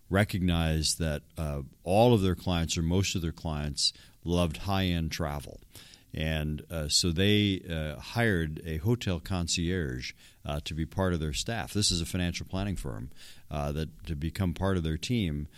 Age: 40-59